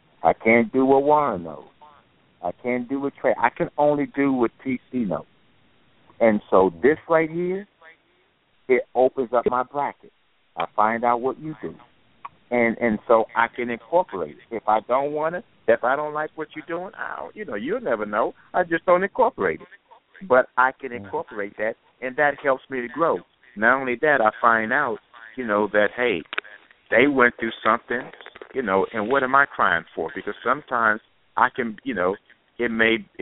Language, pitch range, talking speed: English, 110-140 Hz, 190 wpm